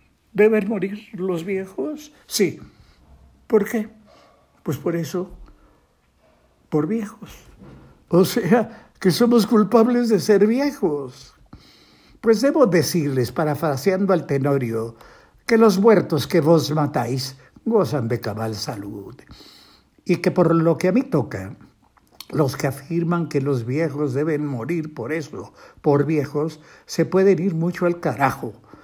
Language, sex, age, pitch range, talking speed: Spanish, male, 60-79, 145-205 Hz, 130 wpm